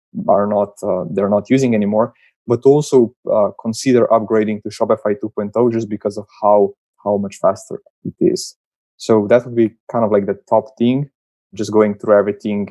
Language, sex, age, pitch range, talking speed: English, male, 20-39, 105-120 Hz, 180 wpm